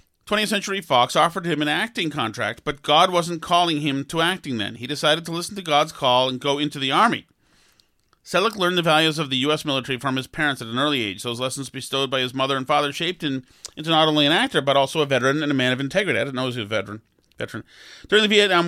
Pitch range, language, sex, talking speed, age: 130-165 Hz, English, male, 245 wpm, 40-59